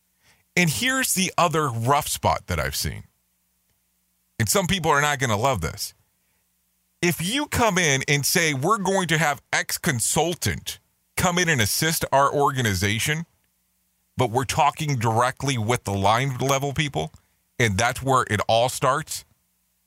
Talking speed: 155 wpm